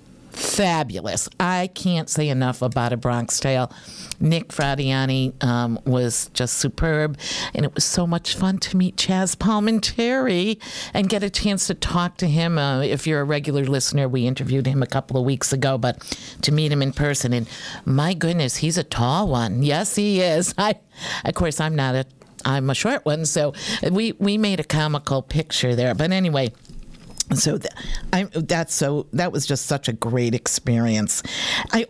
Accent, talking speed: American, 175 wpm